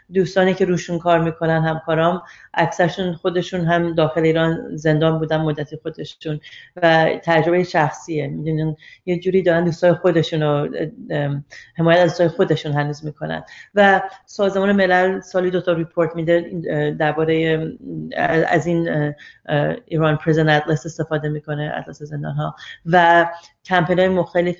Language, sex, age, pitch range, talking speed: Persian, female, 30-49, 155-180 Hz, 125 wpm